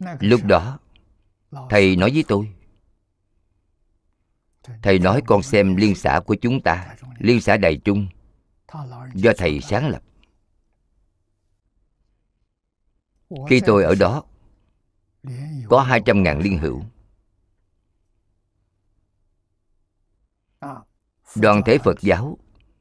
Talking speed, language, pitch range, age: 90 wpm, Vietnamese, 90-110 Hz, 50-69